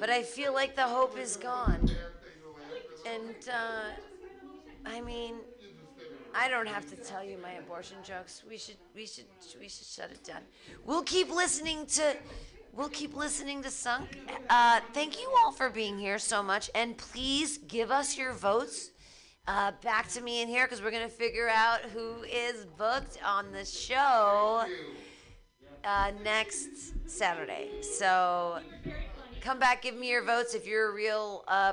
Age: 40-59